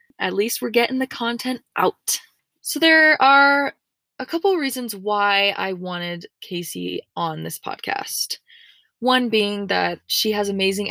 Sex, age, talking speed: female, 20-39, 150 wpm